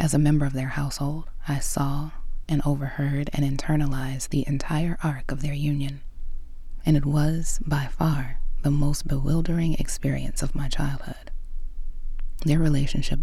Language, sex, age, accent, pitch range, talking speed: English, female, 20-39, American, 130-150 Hz, 145 wpm